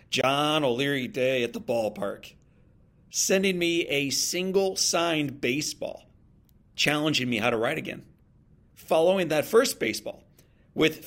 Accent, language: American, English